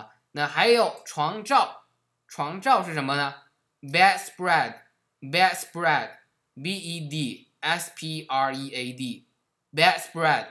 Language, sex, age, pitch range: Chinese, male, 20-39, 130-165 Hz